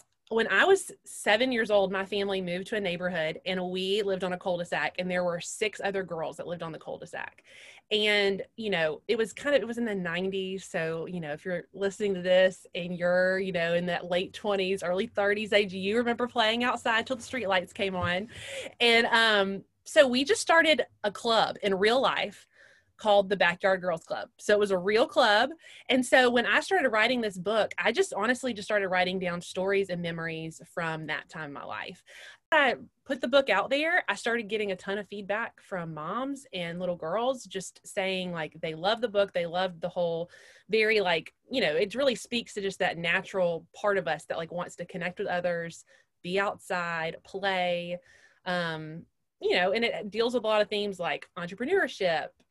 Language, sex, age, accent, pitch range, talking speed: English, female, 20-39, American, 180-225 Hz, 205 wpm